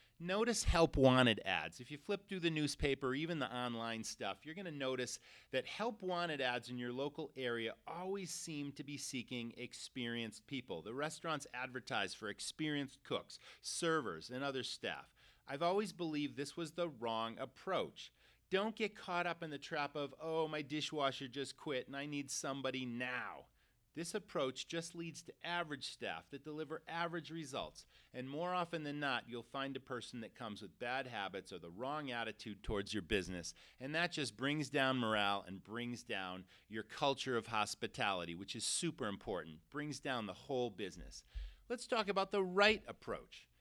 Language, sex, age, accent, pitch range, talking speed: English, male, 30-49, American, 120-165 Hz, 175 wpm